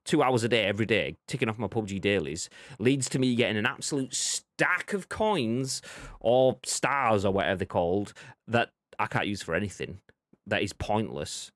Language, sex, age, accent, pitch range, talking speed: English, male, 30-49, British, 100-135 Hz, 180 wpm